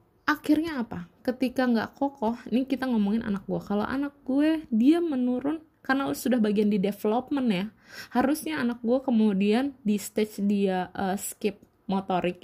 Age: 20-39